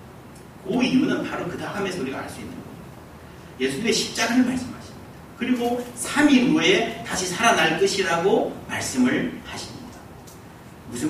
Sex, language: male, Korean